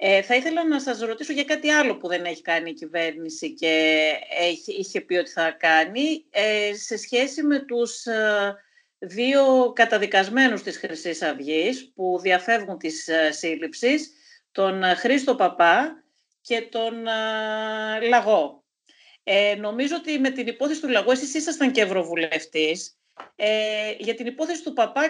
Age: 40-59